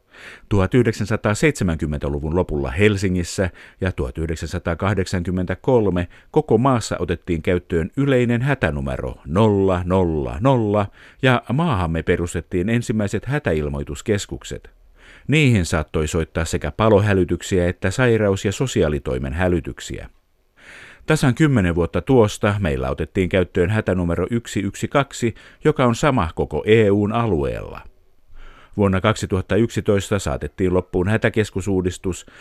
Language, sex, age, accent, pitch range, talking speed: Finnish, male, 50-69, native, 85-115 Hz, 85 wpm